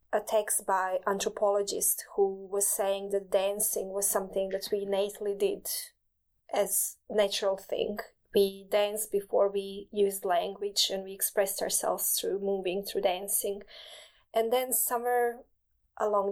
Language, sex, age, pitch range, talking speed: English, female, 20-39, 200-220 Hz, 135 wpm